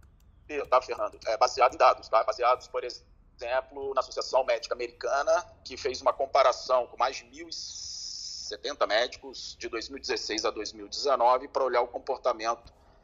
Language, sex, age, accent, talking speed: Portuguese, male, 40-59, Brazilian, 125 wpm